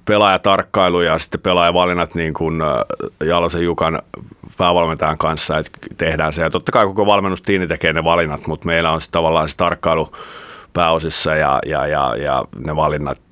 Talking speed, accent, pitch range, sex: 160 wpm, native, 80-90 Hz, male